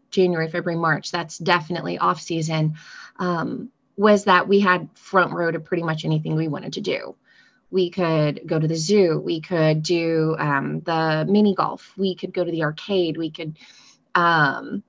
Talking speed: 175 wpm